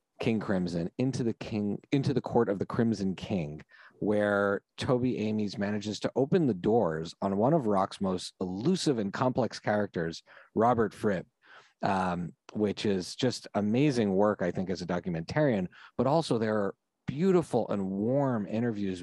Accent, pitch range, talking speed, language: American, 95-125 Hz, 160 wpm, English